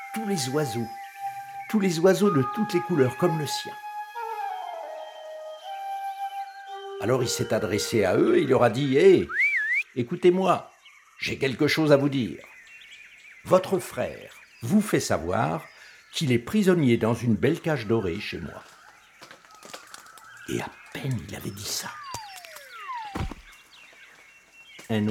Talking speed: 130 wpm